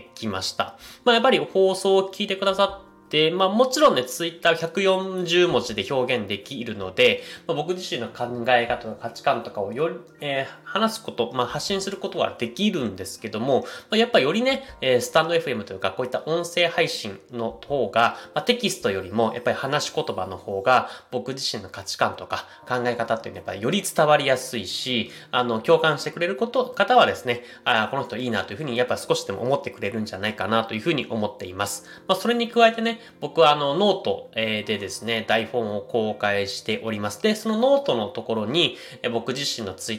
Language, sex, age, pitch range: Japanese, male, 20-39, 110-190 Hz